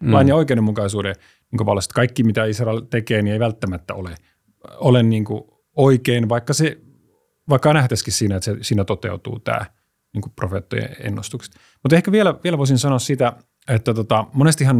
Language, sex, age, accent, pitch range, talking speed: Finnish, male, 30-49, native, 105-125 Hz, 160 wpm